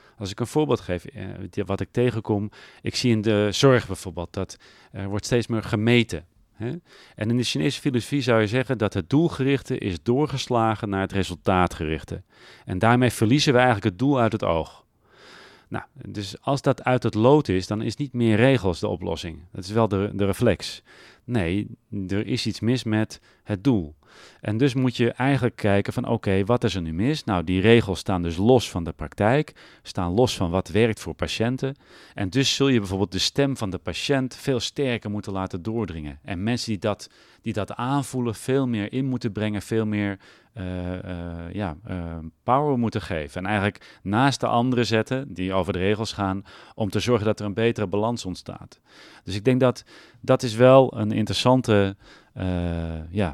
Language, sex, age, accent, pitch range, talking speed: Dutch, male, 40-59, Dutch, 95-125 Hz, 185 wpm